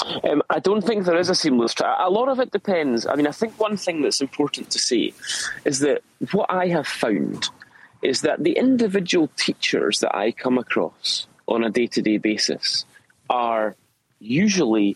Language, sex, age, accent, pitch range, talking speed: English, male, 30-49, British, 115-190 Hz, 190 wpm